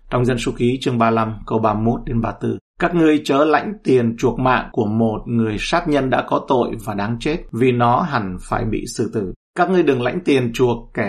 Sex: male